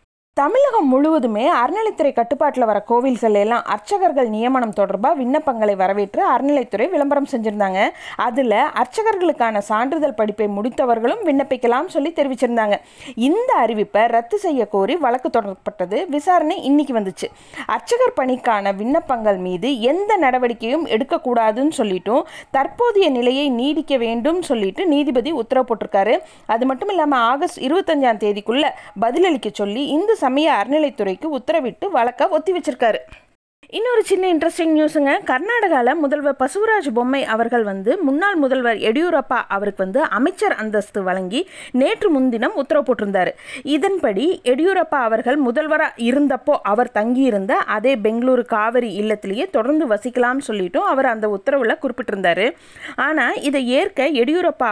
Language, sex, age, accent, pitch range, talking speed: Tamil, female, 20-39, native, 225-305 Hz, 115 wpm